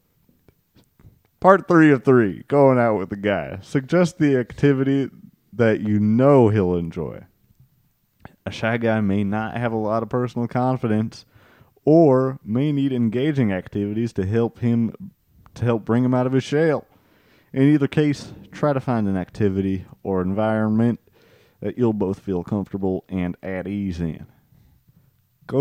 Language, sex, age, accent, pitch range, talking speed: English, male, 30-49, American, 95-120 Hz, 150 wpm